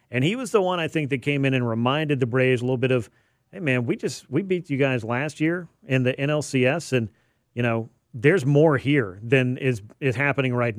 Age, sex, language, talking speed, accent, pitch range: 40-59, male, English, 235 wpm, American, 125-145 Hz